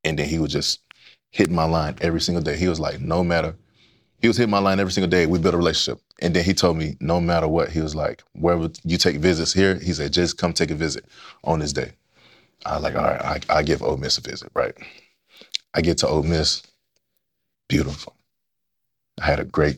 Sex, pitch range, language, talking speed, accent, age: male, 75-90 Hz, English, 230 wpm, American, 20-39